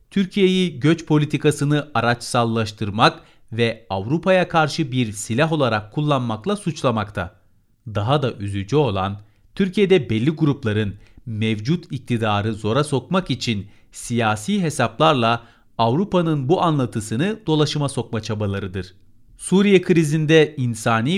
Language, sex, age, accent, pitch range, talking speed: Turkish, male, 40-59, native, 110-150 Hz, 100 wpm